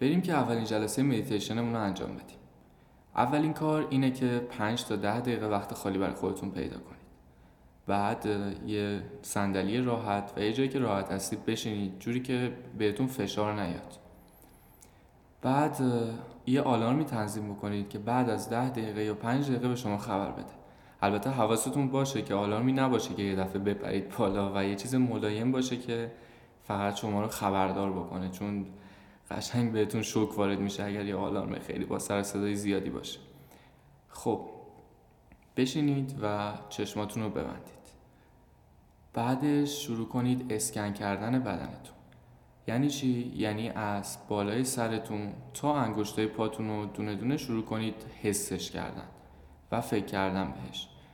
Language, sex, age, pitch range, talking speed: Persian, male, 10-29, 100-125 Hz, 145 wpm